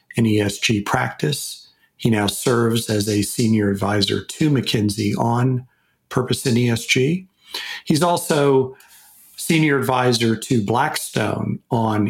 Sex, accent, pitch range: male, American, 105-130 Hz